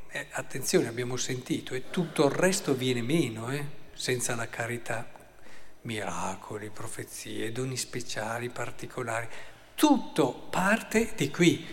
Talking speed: 115 wpm